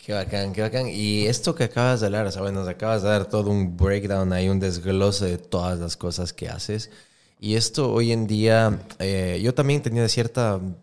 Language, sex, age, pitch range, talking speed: Spanish, male, 20-39, 95-115 Hz, 220 wpm